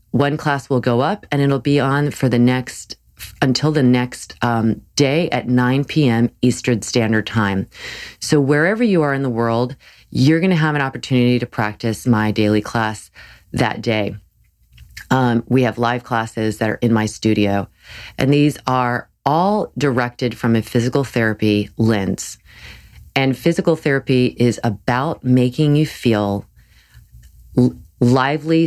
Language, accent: English, American